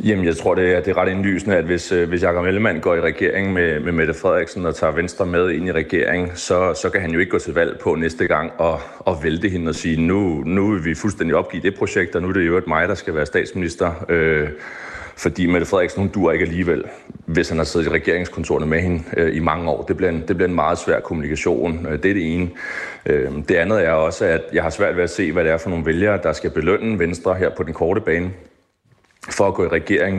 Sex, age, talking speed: male, 30-49, 260 wpm